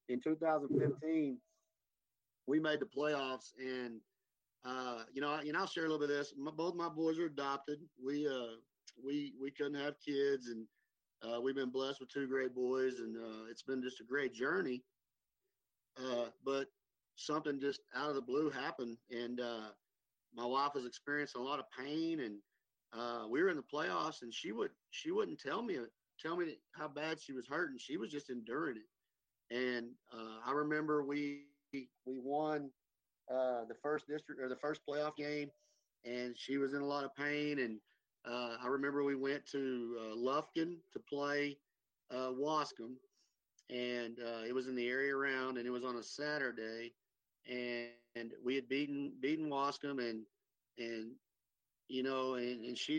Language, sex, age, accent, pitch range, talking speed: English, male, 40-59, American, 125-150 Hz, 180 wpm